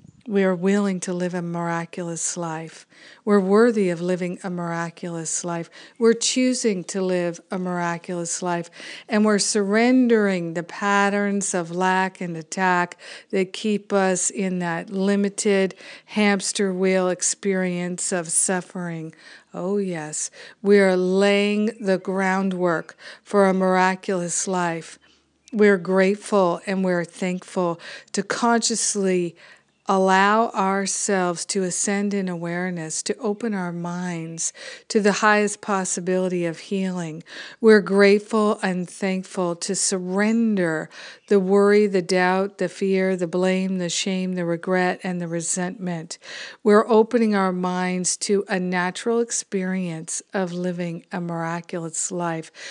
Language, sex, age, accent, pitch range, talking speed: English, female, 50-69, American, 175-200 Hz, 125 wpm